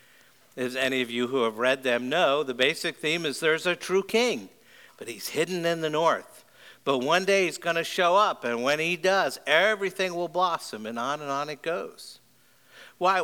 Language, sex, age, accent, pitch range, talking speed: English, male, 60-79, American, 130-185 Hz, 205 wpm